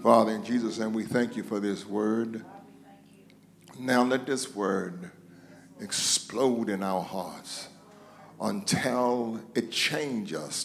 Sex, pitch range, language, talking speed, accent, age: male, 100-140 Hz, English, 125 wpm, American, 60-79